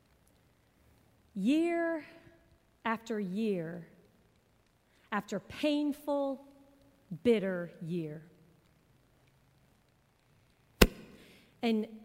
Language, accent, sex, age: English, American, female, 40-59